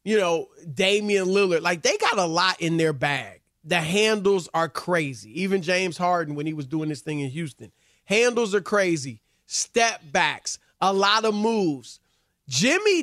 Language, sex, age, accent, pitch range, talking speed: English, male, 30-49, American, 175-225 Hz, 170 wpm